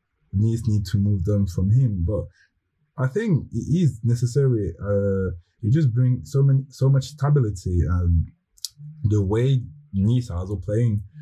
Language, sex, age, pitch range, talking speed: English, male, 20-39, 95-125 Hz, 160 wpm